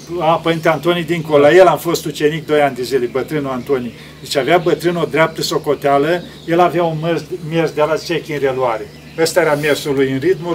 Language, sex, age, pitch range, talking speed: Romanian, male, 40-59, 145-185 Hz, 195 wpm